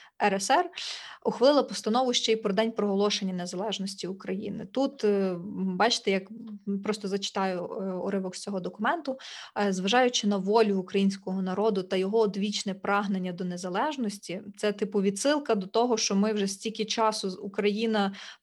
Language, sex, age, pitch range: Ukrainian, female, 20-39, 195-225 Hz